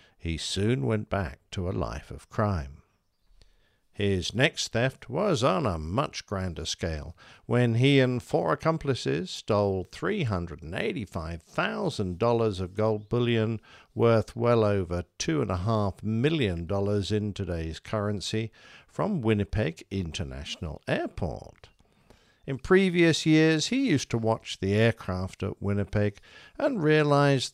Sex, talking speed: male, 115 wpm